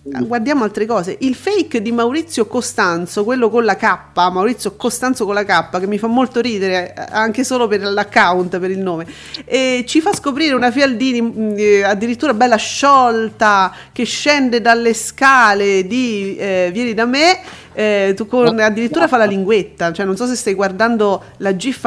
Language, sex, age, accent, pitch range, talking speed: Italian, female, 40-59, native, 205-255 Hz, 175 wpm